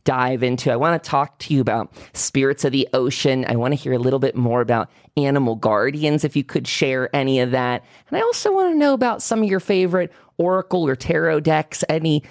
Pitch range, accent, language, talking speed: 120-165 Hz, American, English, 230 wpm